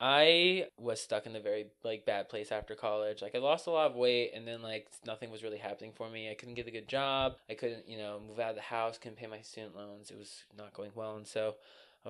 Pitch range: 110-130 Hz